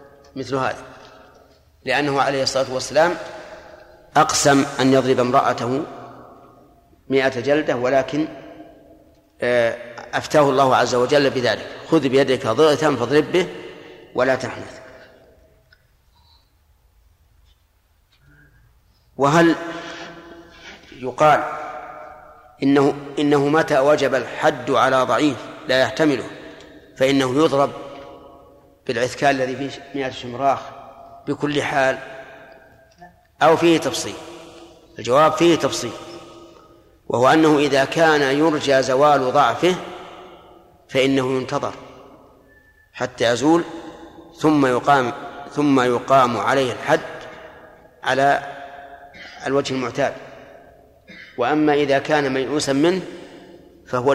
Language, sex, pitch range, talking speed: Arabic, male, 130-150 Hz, 85 wpm